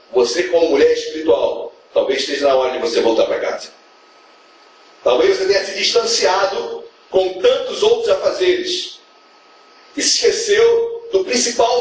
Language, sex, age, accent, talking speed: Portuguese, male, 40-59, Brazilian, 130 wpm